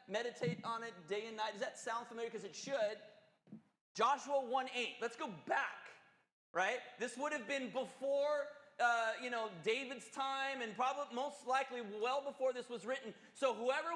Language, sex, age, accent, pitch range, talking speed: English, male, 30-49, American, 235-280 Hz, 170 wpm